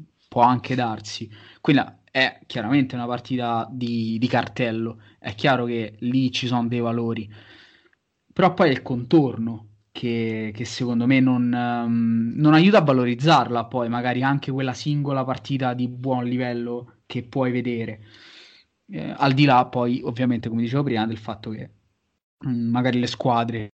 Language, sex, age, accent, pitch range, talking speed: Italian, male, 20-39, native, 115-130 Hz, 155 wpm